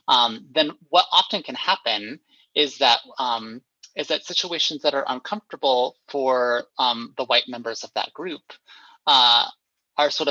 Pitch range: 125-165 Hz